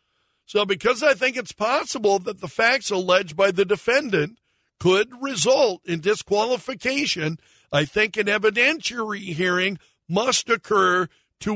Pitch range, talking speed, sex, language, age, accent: 170-255 Hz, 130 wpm, male, English, 60-79, American